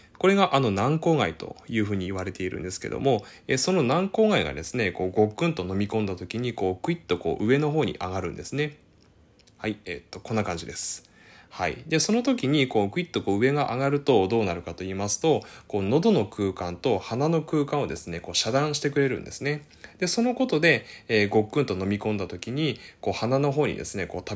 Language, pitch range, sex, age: Japanese, 90-145 Hz, male, 20-39